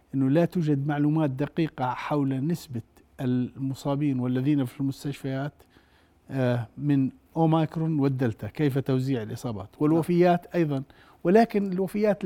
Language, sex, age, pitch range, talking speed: Arabic, male, 50-69, 125-165 Hz, 105 wpm